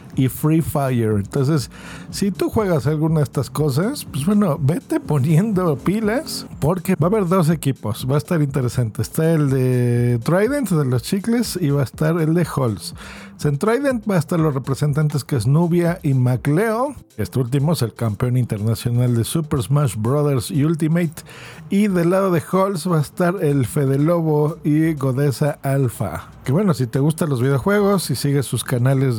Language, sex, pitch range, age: Spanish, male, 125-165 Hz, 50-69